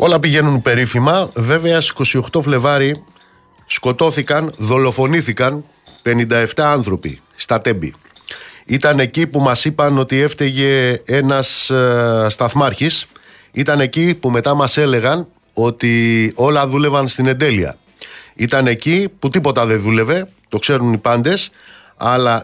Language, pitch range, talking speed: Greek, 120-155 Hz, 120 wpm